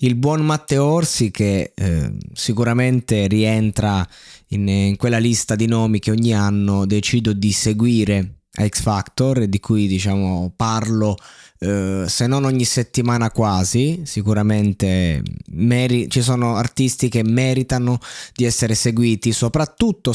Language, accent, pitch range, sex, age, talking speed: Italian, native, 95-120 Hz, male, 20-39, 130 wpm